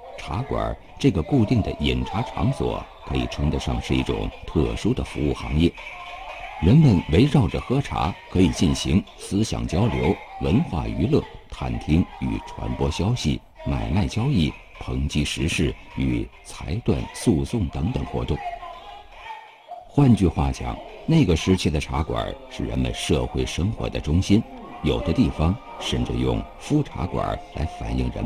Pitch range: 65-110 Hz